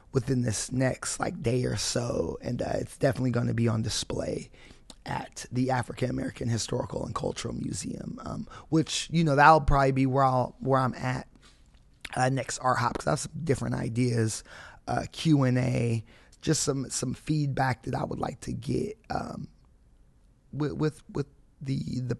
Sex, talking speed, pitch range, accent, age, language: male, 180 wpm, 125-145 Hz, American, 20-39, English